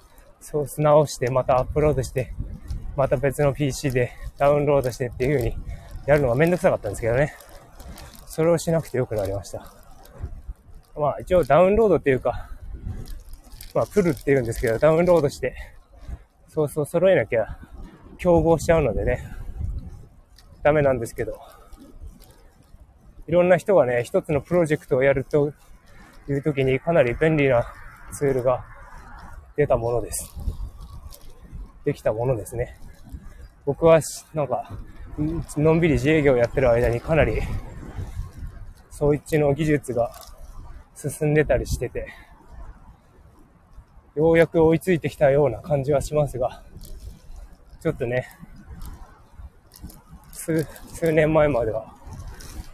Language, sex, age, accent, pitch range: Japanese, male, 20-39, native, 95-150 Hz